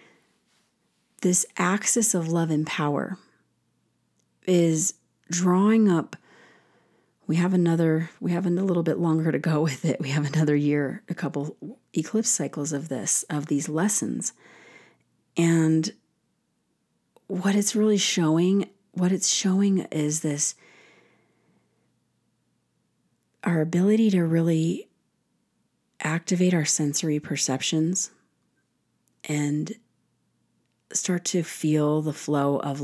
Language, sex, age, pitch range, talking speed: English, female, 40-59, 145-180 Hz, 110 wpm